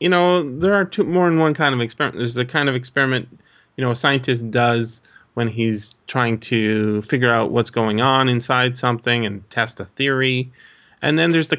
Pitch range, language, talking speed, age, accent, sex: 110-140 Hz, English, 210 wpm, 30-49, American, male